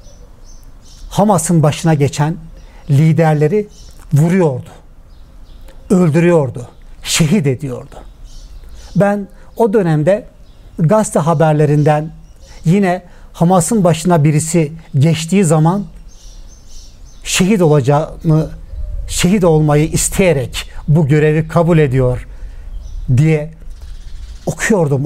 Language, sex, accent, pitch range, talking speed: Turkish, male, native, 120-170 Hz, 70 wpm